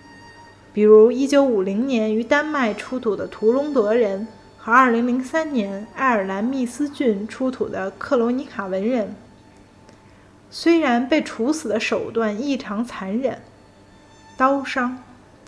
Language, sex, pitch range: Chinese, female, 190-255 Hz